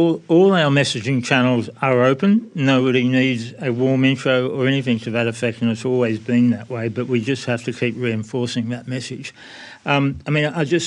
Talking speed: 200 wpm